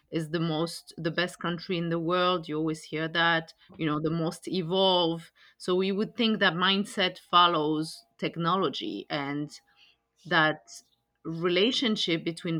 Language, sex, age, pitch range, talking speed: English, female, 30-49, 160-190 Hz, 145 wpm